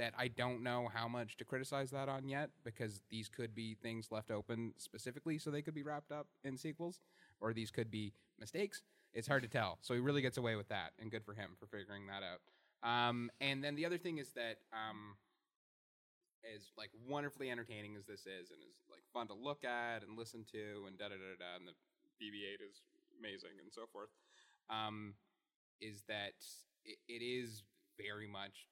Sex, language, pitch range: male, English, 100-125 Hz